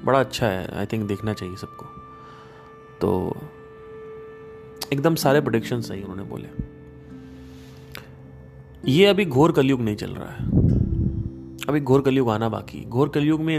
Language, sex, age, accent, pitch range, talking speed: Hindi, male, 30-49, native, 105-145 Hz, 135 wpm